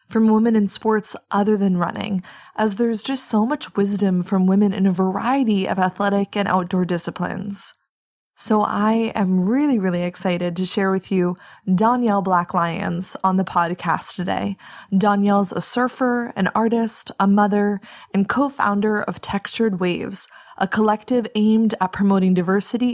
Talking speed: 150 wpm